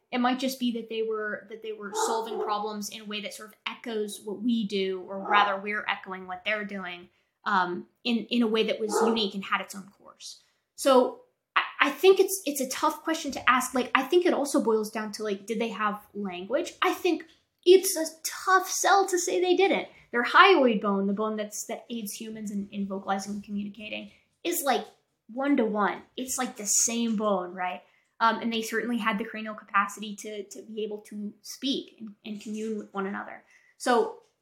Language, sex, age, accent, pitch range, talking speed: English, female, 10-29, American, 205-260 Hz, 210 wpm